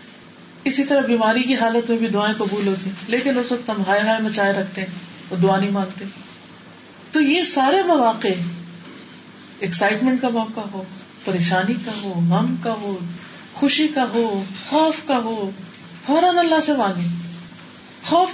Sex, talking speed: female, 160 wpm